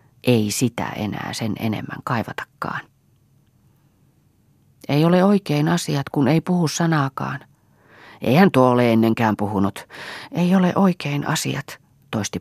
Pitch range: 125-175 Hz